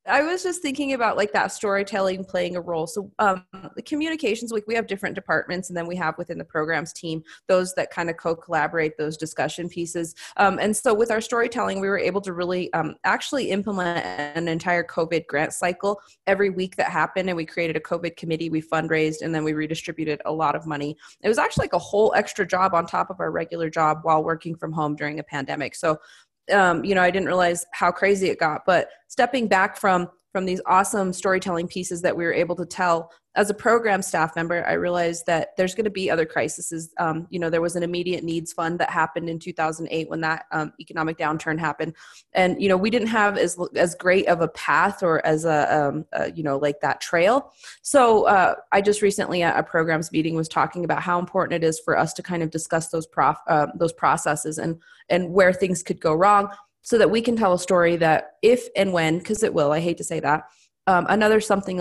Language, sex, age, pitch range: English, female, 20-39, 160-195 Hz